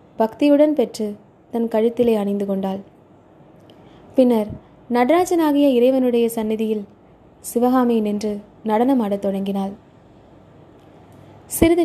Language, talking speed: Tamil, 80 wpm